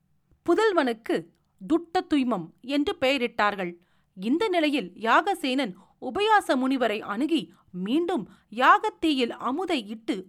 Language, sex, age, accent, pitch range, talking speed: Tamil, female, 40-59, native, 230-325 Hz, 85 wpm